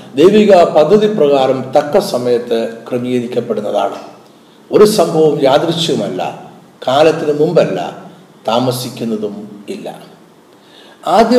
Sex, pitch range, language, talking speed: male, 130-180 Hz, Malayalam, 75 wpm